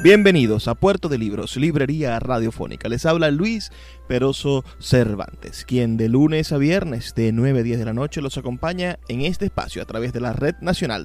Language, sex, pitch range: Spanish, male, 115-155 Hz